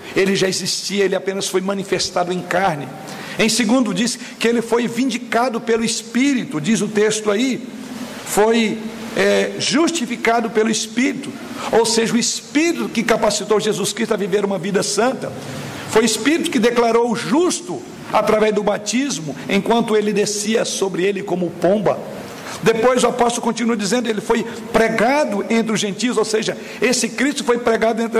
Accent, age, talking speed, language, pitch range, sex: Brazilian, 60-79, 155 wpm, Portuguese, 215-240 Hz, male